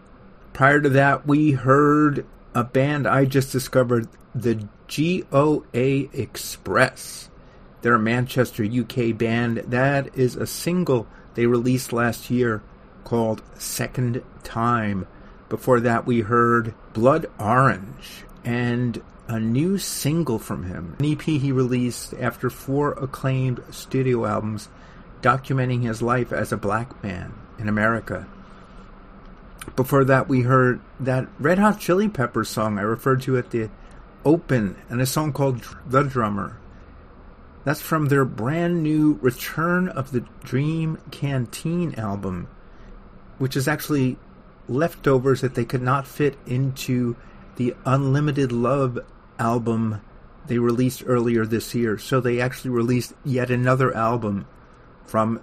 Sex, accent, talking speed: male, American, 130 wpm